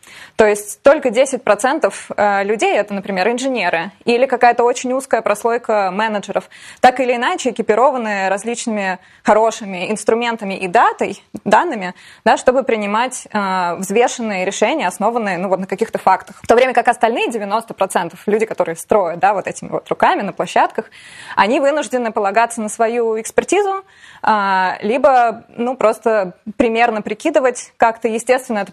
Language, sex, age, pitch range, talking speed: Russian, female, 20-39, 195-245 Hz, 145 wpm